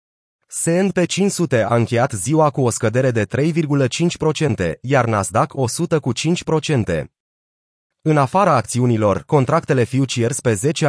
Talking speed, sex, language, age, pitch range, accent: 120 wpm, male, Romanian, 30-49, 120-155 Hz, native